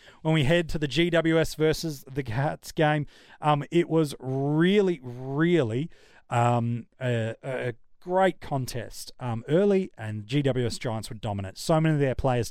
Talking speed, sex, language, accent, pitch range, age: 150 wpm, male, English, Australian, 115-155 Hz, 30-49